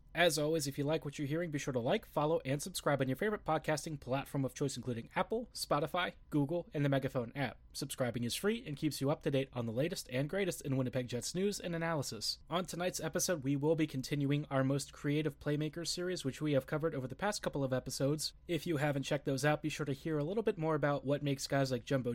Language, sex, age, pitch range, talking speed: English, male, 30-49, 135-170 Hz, 250 wpm